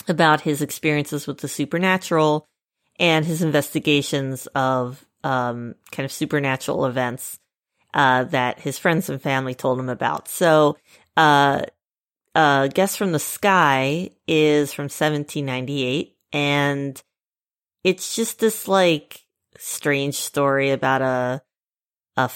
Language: English